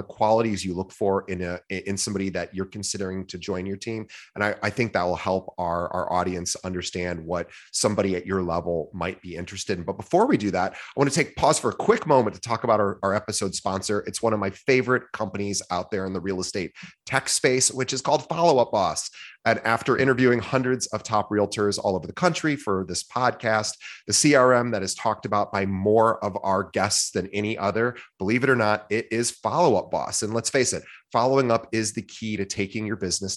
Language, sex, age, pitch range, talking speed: English, male, 30-49, 95-120 Hz, 220 wpm